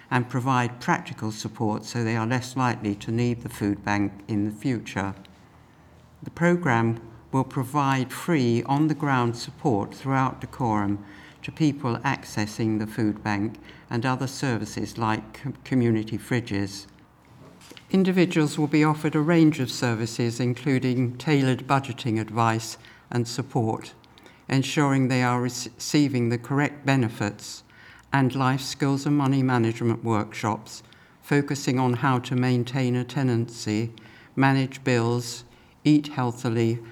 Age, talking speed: 60-79, 125 wpm